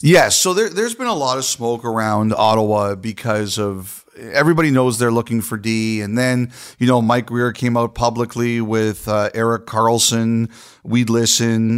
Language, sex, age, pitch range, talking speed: English, male, 40-59, 105-120 Hz, 170 wpm